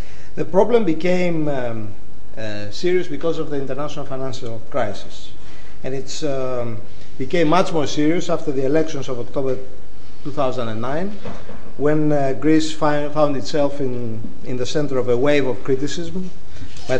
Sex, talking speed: male, 135 wpm